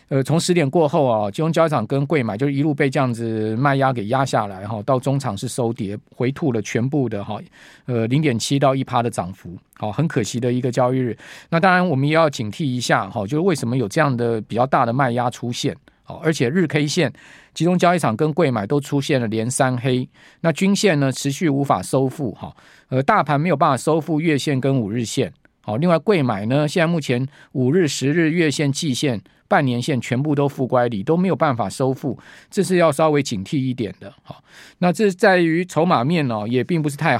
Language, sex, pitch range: Chinese, male, 125-160 Hz